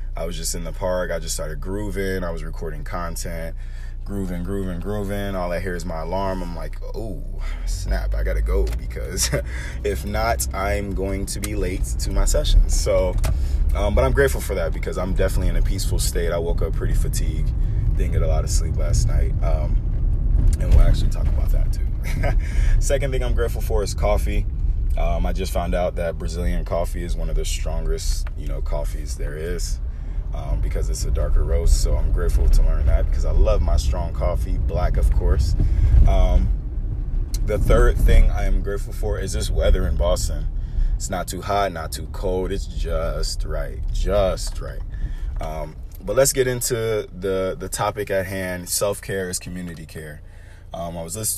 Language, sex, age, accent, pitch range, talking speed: English, male, 20-39, American, 80-95 Hz, 195 wpm